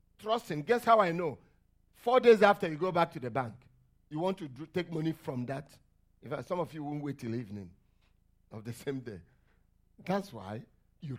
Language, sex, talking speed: English, male, 205 wpm